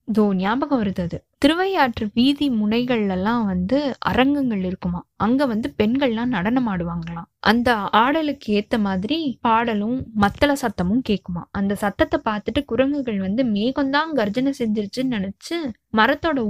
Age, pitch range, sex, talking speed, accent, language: 20-39, 205-270 Hz, female, 120 wpm, native, Tamil